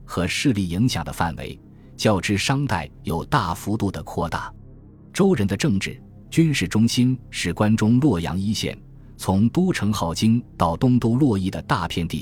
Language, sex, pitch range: Chinese, male, 85-120 Hz